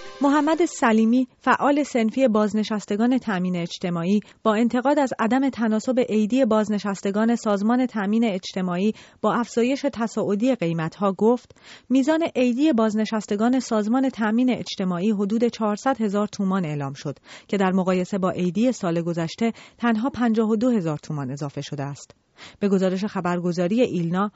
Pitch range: 185-245 Hz